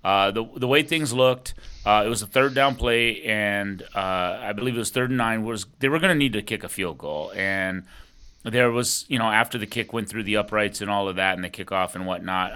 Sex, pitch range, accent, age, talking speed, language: male, 105-130 Hz, American, 30-49, 260 wpm, English